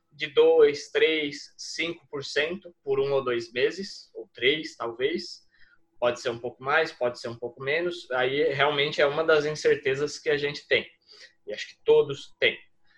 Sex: male